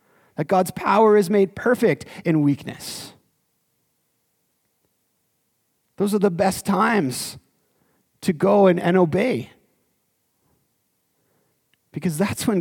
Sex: male